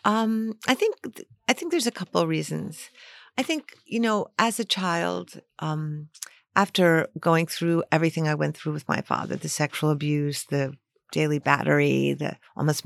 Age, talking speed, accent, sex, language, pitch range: 50-69, 170 wpm, American, female, English, 160-220 Hz